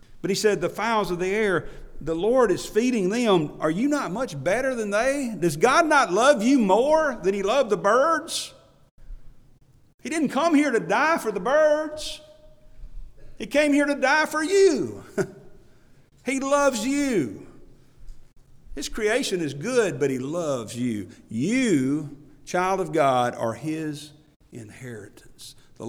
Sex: male